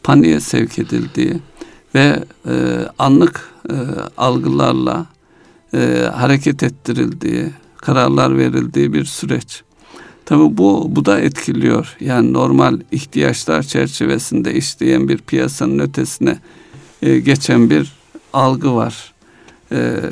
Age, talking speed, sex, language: 60-79, 100 wpm, male, Turkish